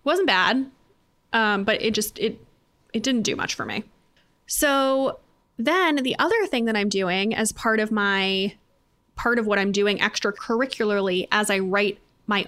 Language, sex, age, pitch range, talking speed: English, female, 20-39, 205-265 Hz, 170 wpm